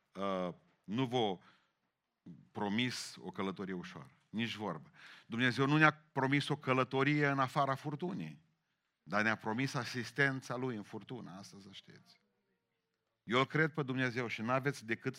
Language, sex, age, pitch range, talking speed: Romanian, male, 40-59, 115-150 Hz, 140 wpm